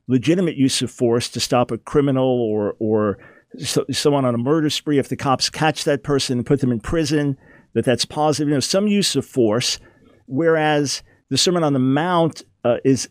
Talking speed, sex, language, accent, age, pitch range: 200 wpm, male, English, American, 50-69, 125-155 Hz